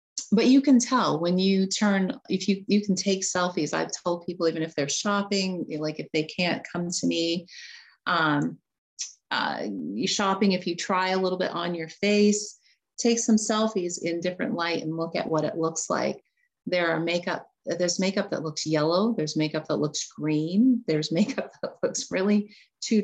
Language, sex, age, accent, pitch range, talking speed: English, female, 30-49, American, 160-200 Hz, 185 wpm